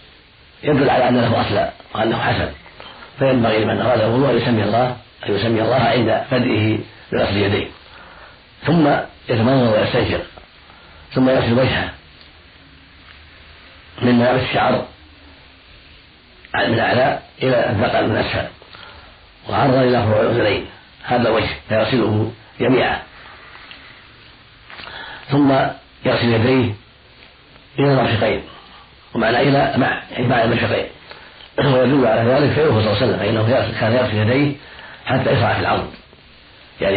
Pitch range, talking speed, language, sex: 95-125 Hz, 110 wpm, Arabic, male